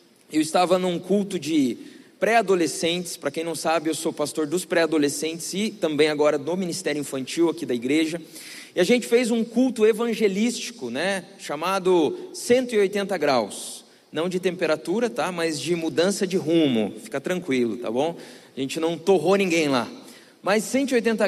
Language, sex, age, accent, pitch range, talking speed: Portuguese, male, 20-39, Brazilian, 170-220 Hz, 160 wpm